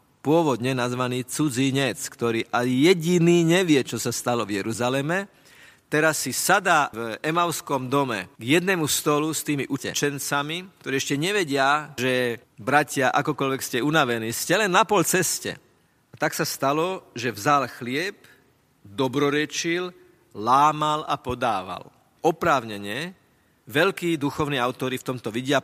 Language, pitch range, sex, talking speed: Slovak, 120-155 Hz, male, 130 wpm